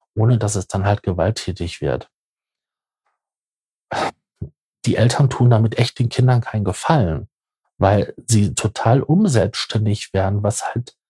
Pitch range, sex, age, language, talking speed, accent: 100-130 Hz, male, 50-69, German, 125 wpm, German